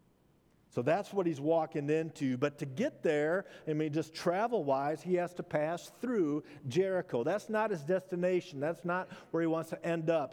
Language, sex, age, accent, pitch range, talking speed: English, male, 50-69, American, 150-185 Hz, 185 wpm